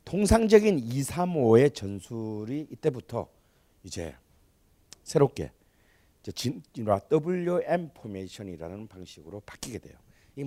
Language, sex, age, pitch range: Korean, male, 40-59, 95-155 Hz